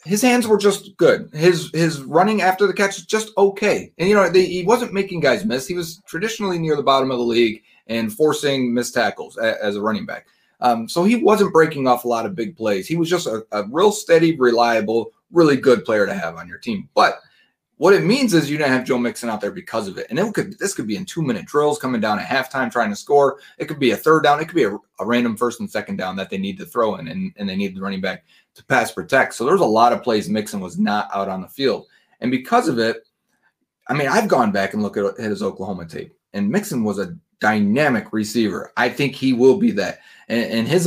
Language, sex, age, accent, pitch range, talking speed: English, male, 30-49, American, 110-180 Hz, 255 wpm